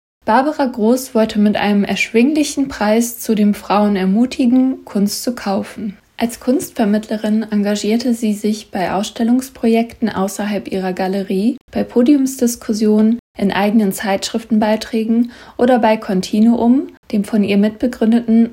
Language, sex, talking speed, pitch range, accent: German, female, 115 wpm, 205-245 Hz, German